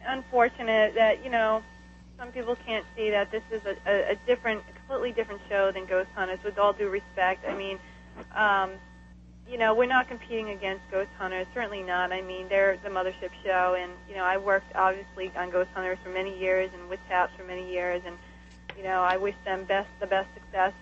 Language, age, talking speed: English, 30-49, 210 wpm